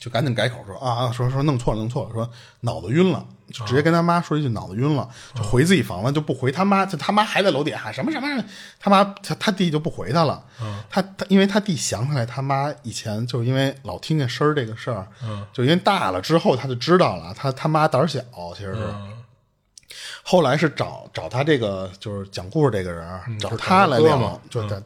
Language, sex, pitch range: Chinese, male, 110-160 Hz